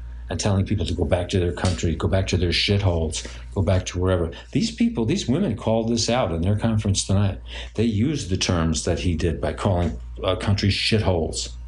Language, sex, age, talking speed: English, male, 60-79, 210 wpm